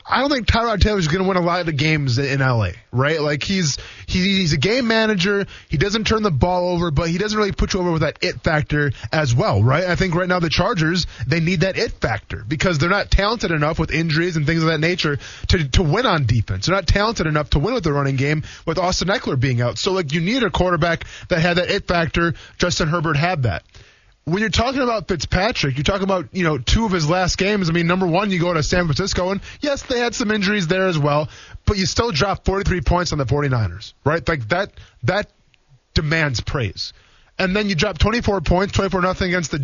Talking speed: 240 wpm